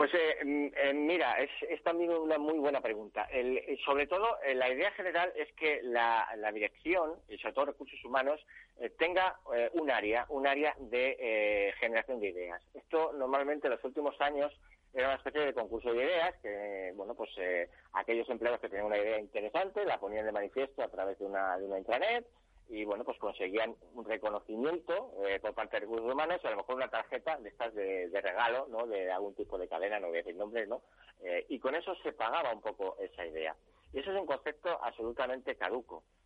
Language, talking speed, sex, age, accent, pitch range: Spanish, 210 wpm, male, 40-59, Spanish, 110-180 Hz